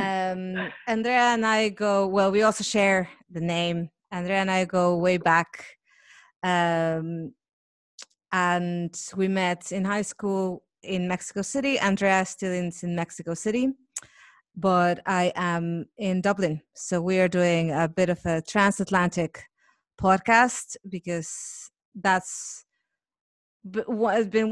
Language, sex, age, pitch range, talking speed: English, female, 30-49, 180-220 Hz, 125 wpm